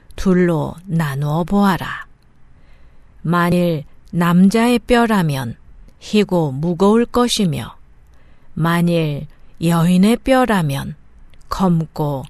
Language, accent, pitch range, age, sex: Korean, native, 160-215 Hz, 40-59, female